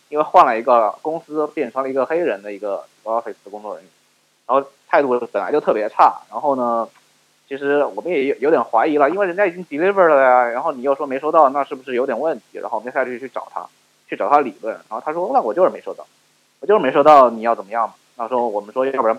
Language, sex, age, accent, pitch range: Chinese, male, 20-39, native, 125-175 Hz